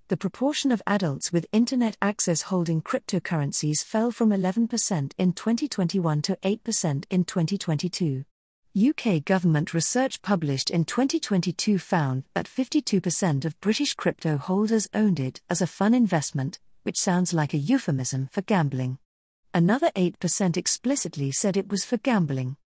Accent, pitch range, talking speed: British, 160-215 Hz, 135 wpm